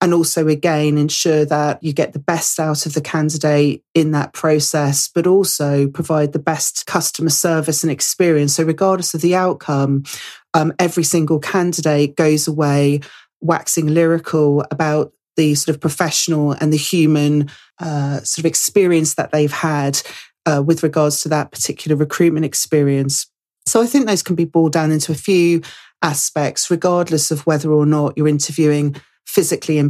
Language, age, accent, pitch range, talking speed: English, 40-59, British, 145-165 Hz, 165 wpm